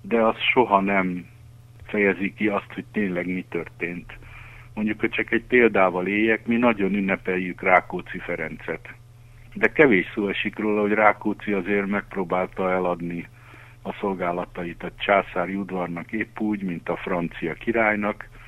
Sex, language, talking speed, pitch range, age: male, Hungarian, 140 wpm, 95-115 Hz, 60-79